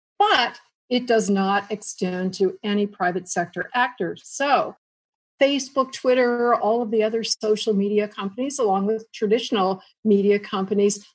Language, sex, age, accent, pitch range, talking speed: English, female, 50-69, American, 195-255 Hz, 135 wpm